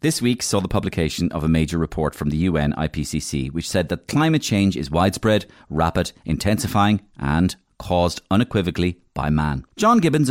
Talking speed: 170 wpm